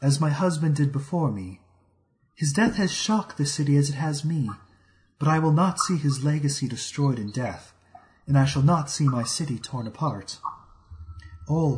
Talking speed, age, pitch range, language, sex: 185 wpm, 30-49, 105-160 Hz, English, male